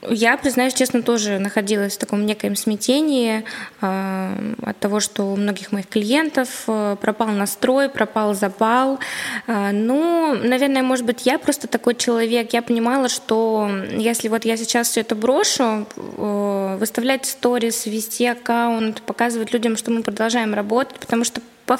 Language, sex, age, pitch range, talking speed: Russian, female, 20-39, 210-245 Hz, 140 wpm